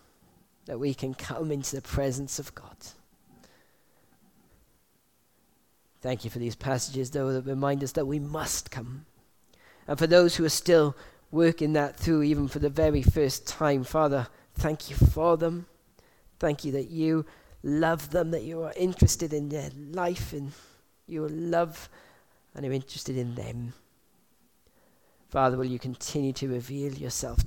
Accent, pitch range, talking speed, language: British, 130-155 Hz, 155 wpm, English